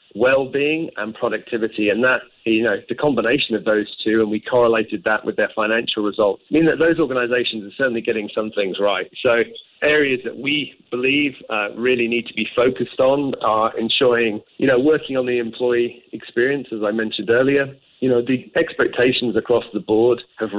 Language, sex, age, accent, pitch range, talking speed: English, male, 40-59, British, 110-135 Hz, 185 wpm